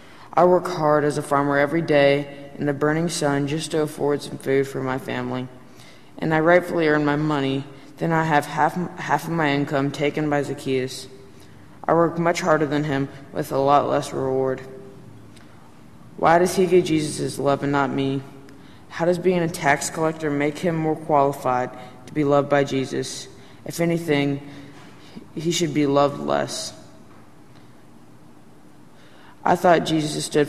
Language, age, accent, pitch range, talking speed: English, 20-39, American, 135-160 Hz, 165 wpm